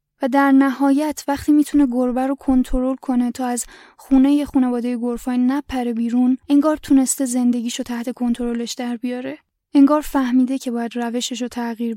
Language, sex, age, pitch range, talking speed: English, female, 10-29, 245-280 Hz, 155 wpm